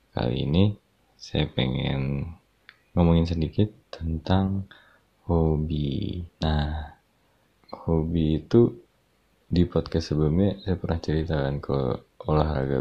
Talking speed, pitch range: 90 wpm, 75-95 Hz